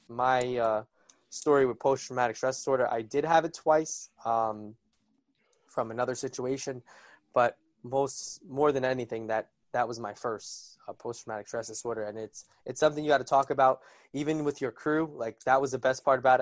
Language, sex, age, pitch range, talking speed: English, male, 20-39, 115-135 Hz, 185 wpm